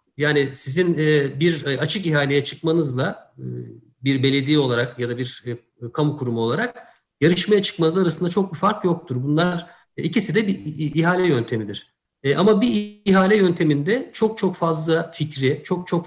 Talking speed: 140 wpm